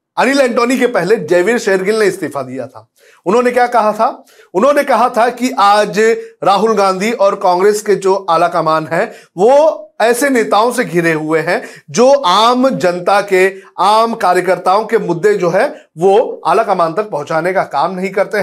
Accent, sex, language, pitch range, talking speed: native, male, Hindi, 170-230 Hz, 175 wpm